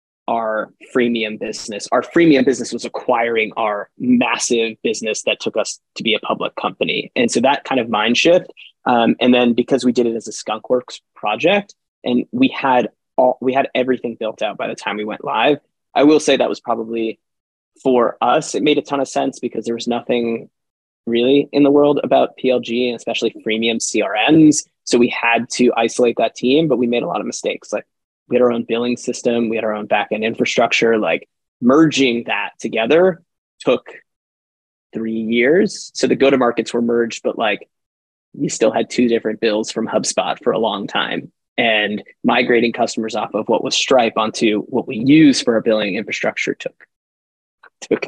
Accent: American